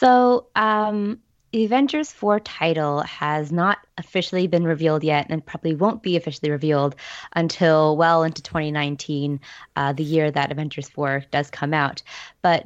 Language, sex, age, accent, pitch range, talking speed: English, female, 20-39, American, 150-200 Hz, 145 wpm